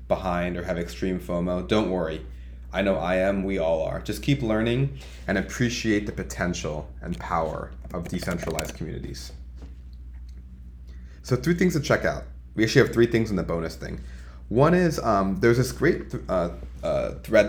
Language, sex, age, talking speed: English, male, 20-39, 170 wpm